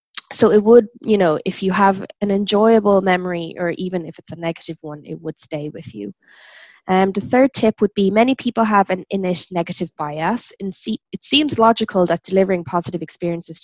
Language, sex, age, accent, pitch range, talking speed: English, female, 10-29, Irish, 160-195 Hz, 190 wpm